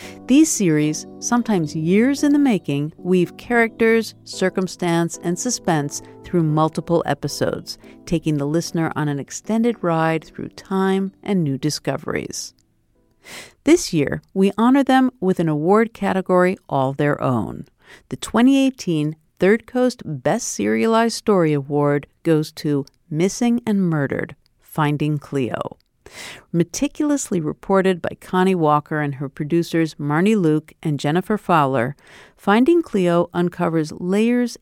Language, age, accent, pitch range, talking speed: English, 50-69, American, 150-205 Hz, 125 wpm